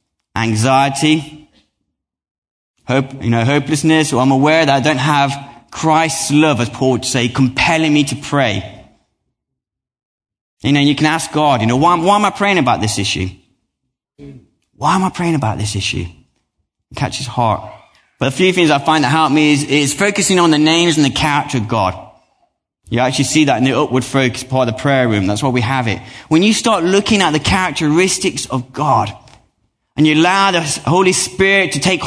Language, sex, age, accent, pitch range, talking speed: English, male, 20-39, British, 125-165 Hz, 195 wpm